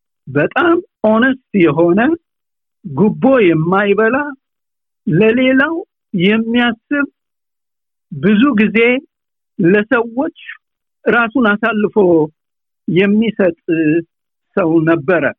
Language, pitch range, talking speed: Amharic, 170-235 Hz, 60 wpm